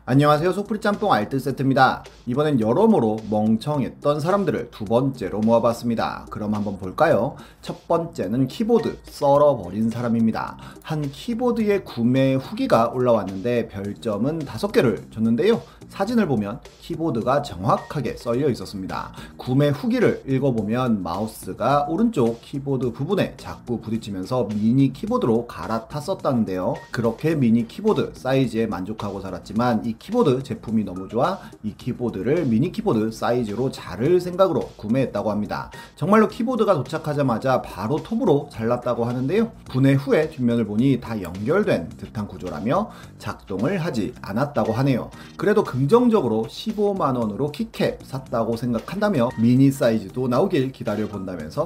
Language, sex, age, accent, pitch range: Korean, male, 30-49, native, 115-165 Hz